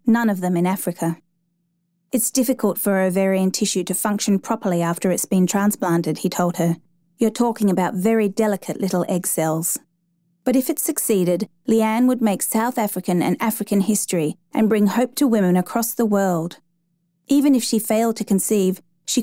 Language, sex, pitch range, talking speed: English, female, 175-225 Hz, 170 wpm